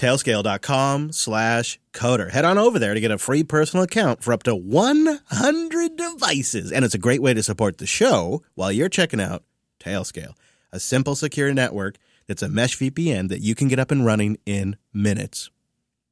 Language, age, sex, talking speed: English, 30-49, male, 180 wpm